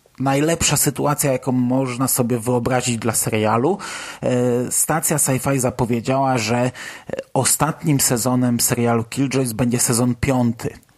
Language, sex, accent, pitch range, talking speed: Polish, male, native, 125-145 Hz, 105 wpm